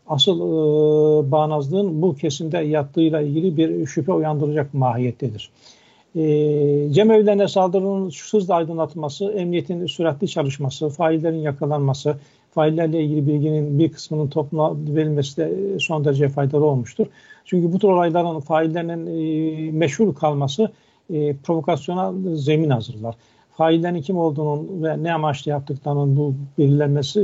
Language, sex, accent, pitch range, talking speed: Turkish, male, native, 145-170 Hz, 120 wpm